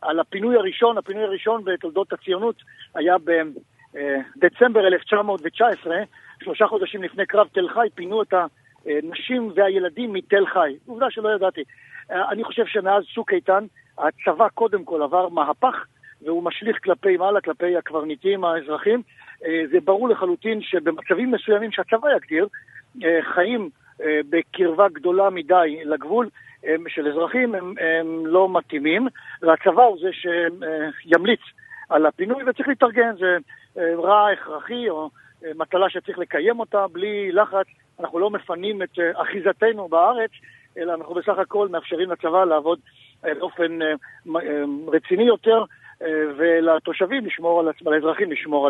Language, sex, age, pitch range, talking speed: Hebrew, male, 50-69, 165-215 Hz, 125 wpm